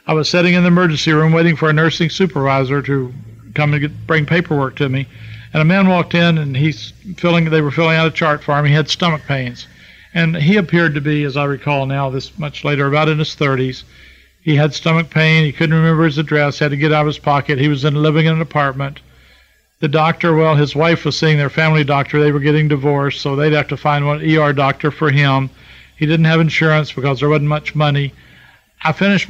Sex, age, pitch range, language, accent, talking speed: male, 50-69, 145-165 Hz, English, American, 235 wpm